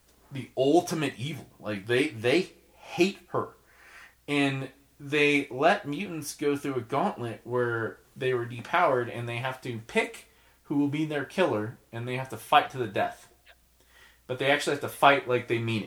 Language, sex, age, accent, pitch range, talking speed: English, male, 30-49, American, 115-145 Hz, 180 wpm